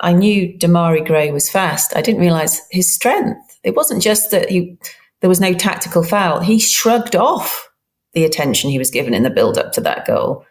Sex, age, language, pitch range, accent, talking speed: female, 40-59, English, 155-190 Hz, British, 200 wpm